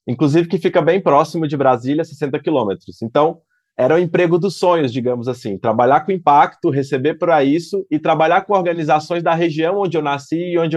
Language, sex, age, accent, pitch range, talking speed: Portuguese, male, 20-39, Brazilian, 135-170 Hz, 190 wpm